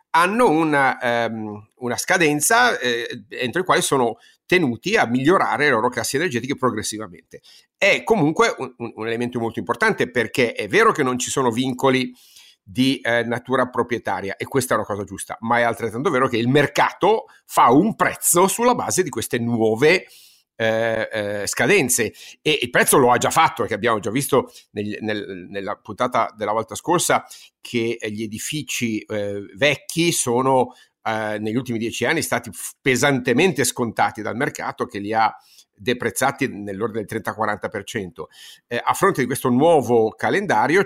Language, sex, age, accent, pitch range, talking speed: Italian, male, 50-69, native, 110-140 Hz, 155 wpm